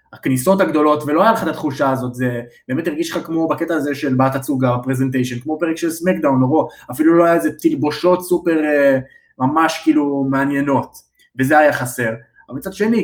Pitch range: 135-170 Hz